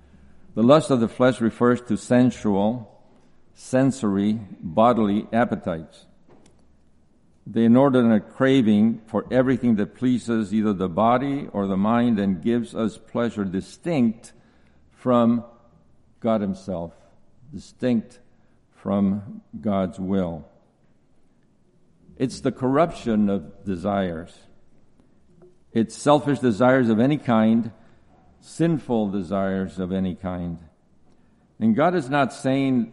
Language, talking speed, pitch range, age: English, 105 wpm, 100-125 Hz, 50-69